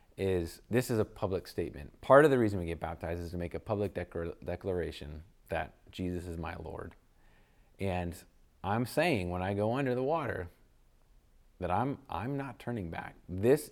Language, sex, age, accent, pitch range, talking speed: English, male, 30-49, American, 85-110 Hz, 180 wpm